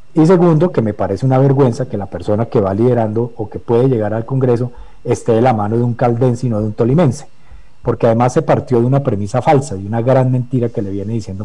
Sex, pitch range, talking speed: male, 110-140 Hz, 245 wpm